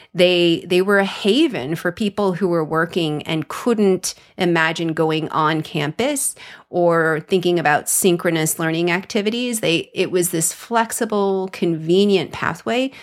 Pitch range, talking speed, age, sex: 155-185 Hz, 135 wpm, 30-49, female